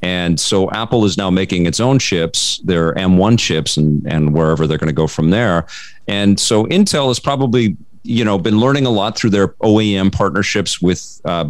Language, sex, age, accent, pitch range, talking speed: English, male, 40-59, American, 85-115 Hz, 195 wpm